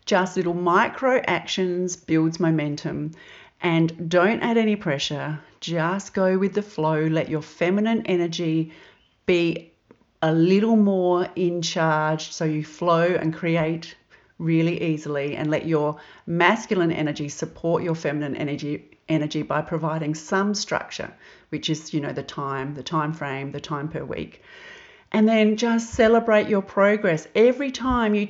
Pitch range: 155-195 Hz